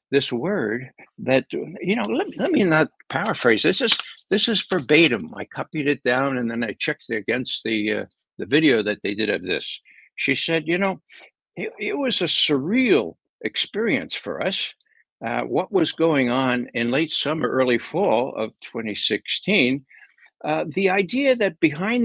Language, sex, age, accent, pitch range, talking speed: English, male, 60-79, American, 135-215 Hz, 170 wpm